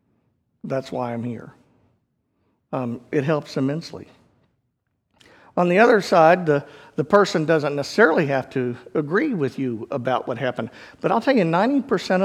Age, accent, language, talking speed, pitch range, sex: 50-69, American, English, 150 wpm, 135-175 Hz, male